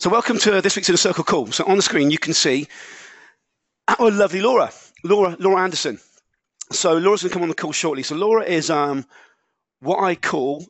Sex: male